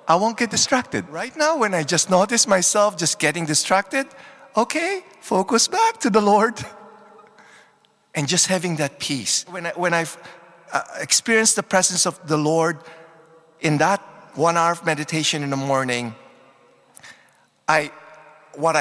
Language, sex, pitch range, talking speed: English, male, 145-210 Hz, 150 wpm